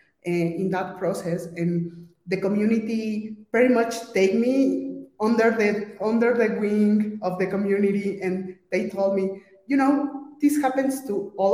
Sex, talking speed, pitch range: female, 145 wpm, 190-230 Hz